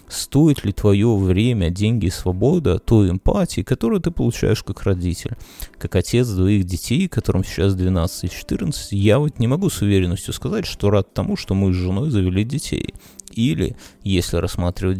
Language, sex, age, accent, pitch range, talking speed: Russian, male, 30-49, native, 90-110 Hz, 170 wpm